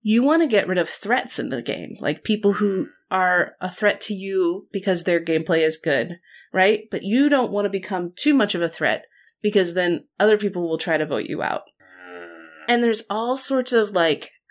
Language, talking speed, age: English, 210 wpm, 30-49